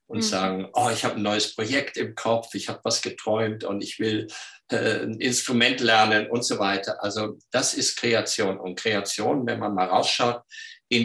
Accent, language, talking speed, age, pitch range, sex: German, German, 190 wpm, 50-69, 105-150 Hz, male